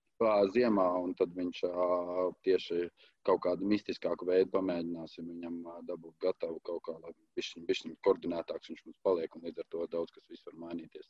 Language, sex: English, male